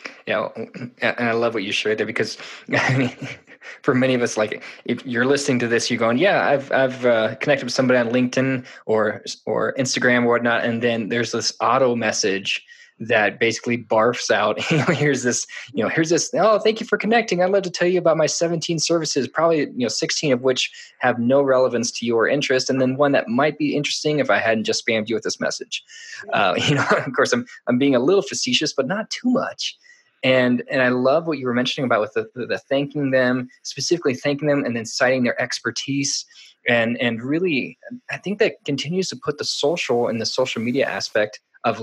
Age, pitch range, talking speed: 20-39, 120-155 Hz, 220 wpm